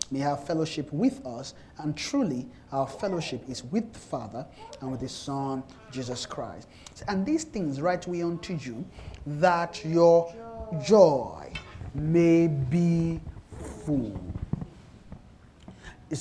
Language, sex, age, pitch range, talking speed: English, male, 30-49, 120-165 Hz, 120 wpm